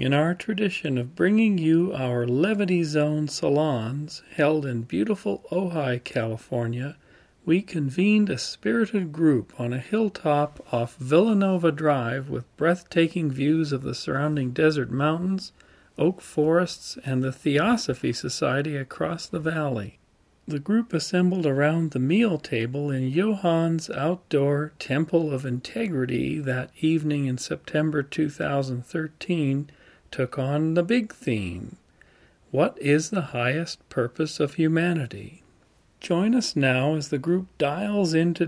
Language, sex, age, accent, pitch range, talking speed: English, male, 40-59, American, 130-180 Hz, 125 wpm